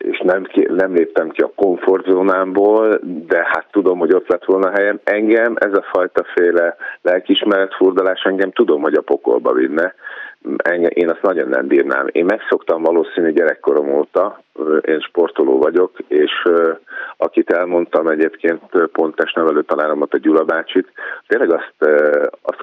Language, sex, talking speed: Hungarian, male, 140 wpm